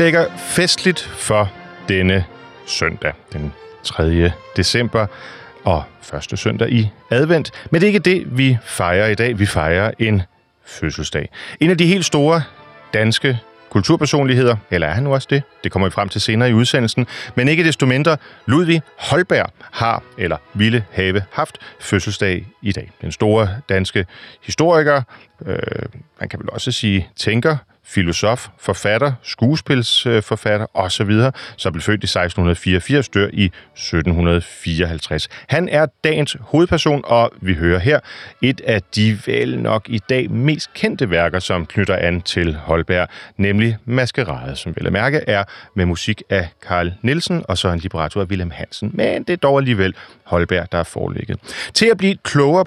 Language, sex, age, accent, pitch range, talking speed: Danish, male, 40-59, native, 90-135 Hz, 160 wpm